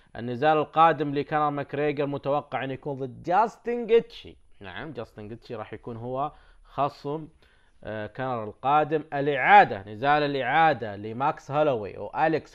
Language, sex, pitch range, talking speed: Arabic, male, 120-145 Hz, 120 wpm